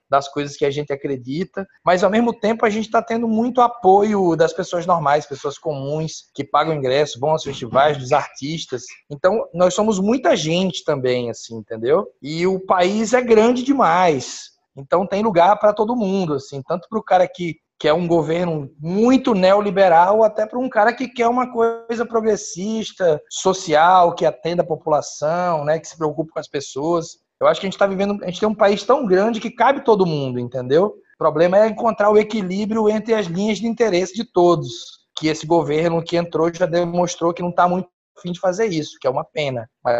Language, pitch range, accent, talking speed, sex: Portuguese, 160-215 Hz, Brazilian, 200 wpm, male